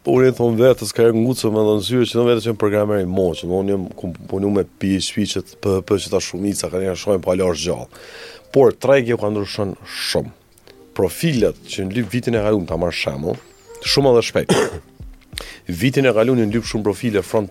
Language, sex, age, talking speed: English, male, 30-49, 60 wpm